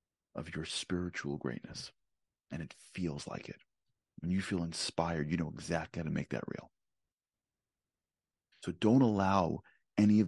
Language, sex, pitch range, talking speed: English, male, 85-100 Hz, 150 wpm